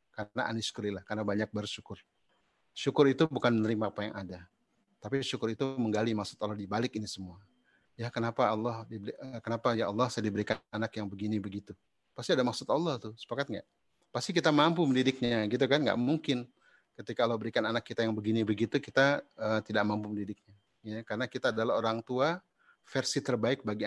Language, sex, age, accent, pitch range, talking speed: Indonesian, male, 30-49, native, 105-125 Hz, 180 wpm